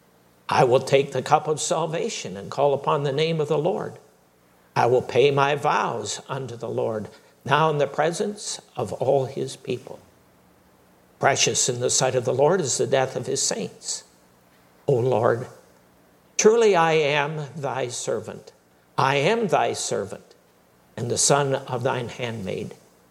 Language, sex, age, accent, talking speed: English, male, 60-79, American, 160 wpm